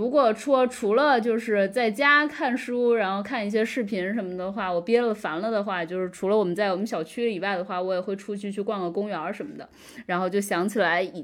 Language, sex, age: Chinese, female, 20-39